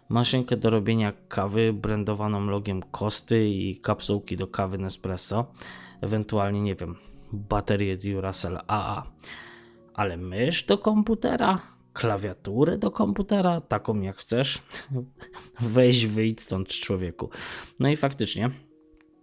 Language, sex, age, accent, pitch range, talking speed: Polish, male, 20-39, native, 105-130 Hz, 110 wpm